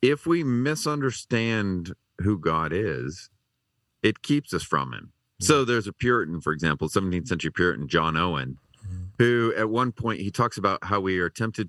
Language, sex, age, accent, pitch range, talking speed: English, male, 40-59, American, 95-135 Hz, 170 wpm